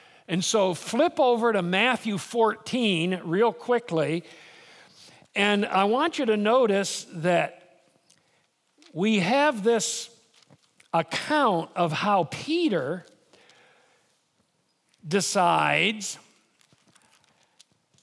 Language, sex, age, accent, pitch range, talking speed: English, male, 50-69, American, 185-250 Hz, 80 wpm